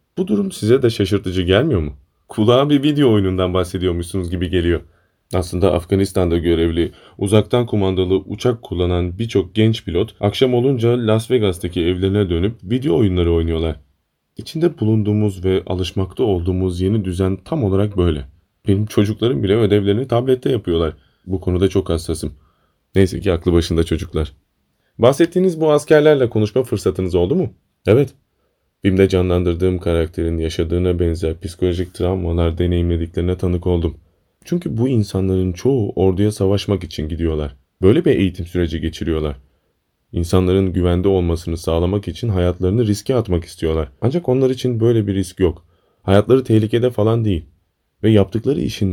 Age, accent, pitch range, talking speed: 30-49, native, 85-110 Hz, 135 wpm